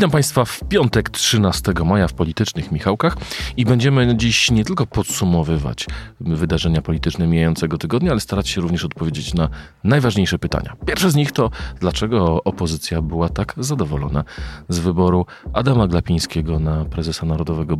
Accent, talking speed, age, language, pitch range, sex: native, 145 wpm, 40-59, Polish, 80-100 Hz, male